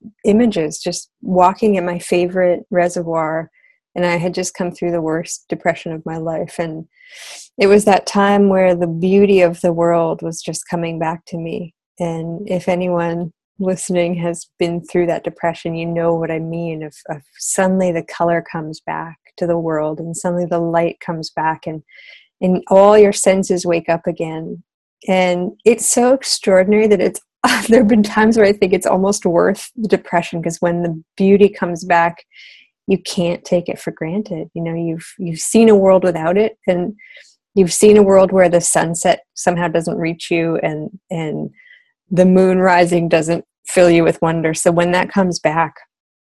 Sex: female